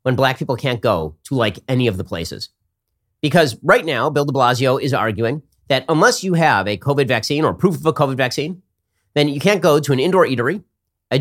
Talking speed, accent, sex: 220 wpm, American, male